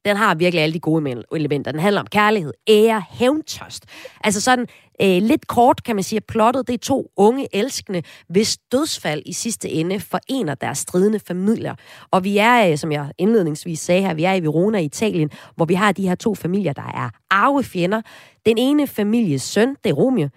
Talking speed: 195 wpm